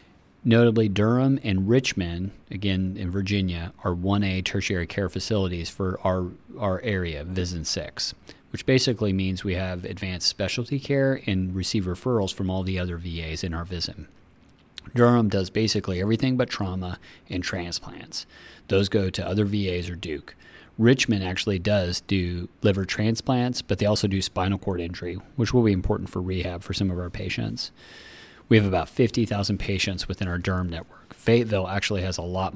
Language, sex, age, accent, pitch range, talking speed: English, male, 30-49, American, 90-110 Hz, 170 wpm